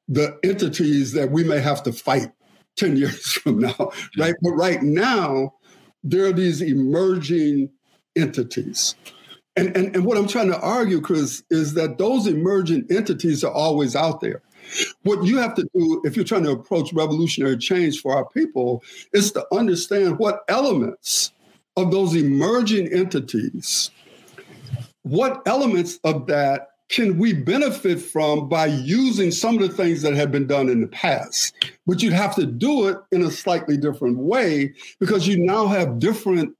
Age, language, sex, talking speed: 60-79, English, male, 165 wpm